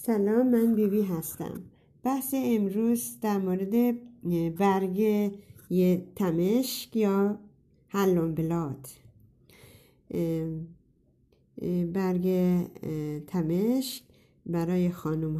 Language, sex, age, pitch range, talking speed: Persian, female, 50-69, 165-230 Hz, 70 wpm